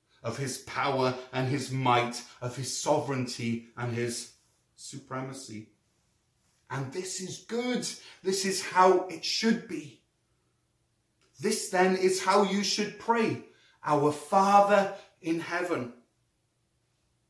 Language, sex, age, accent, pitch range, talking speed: English, male, 30-49, British, 145-195 Hz, 115 wpm